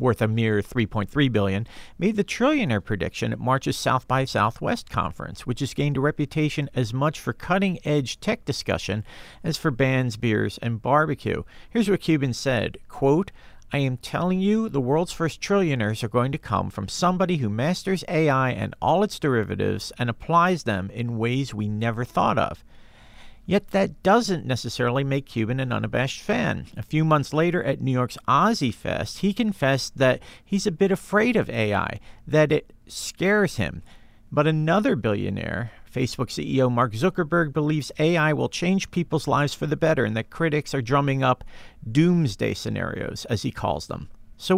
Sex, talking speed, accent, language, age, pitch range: male, 170 wpm, American, English, 50-69, 115-170 Hz